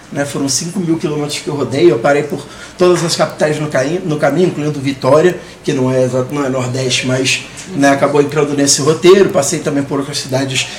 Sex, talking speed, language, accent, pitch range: male, 185 wpm, Portuguese, Brazilian, 150-185 Hz